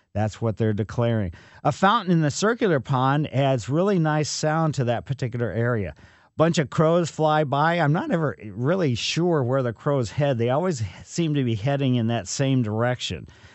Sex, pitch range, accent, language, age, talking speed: male, 115-155 Hz, American, English, 50-69, 190 wpm